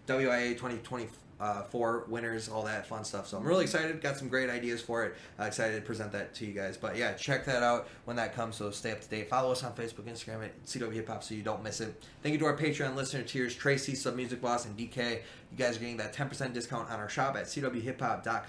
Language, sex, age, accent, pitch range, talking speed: English, male, 20-39, American, 110-130 Hz, 245 wpm